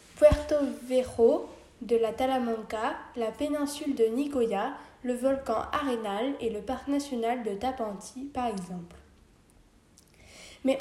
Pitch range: 225-280 Hz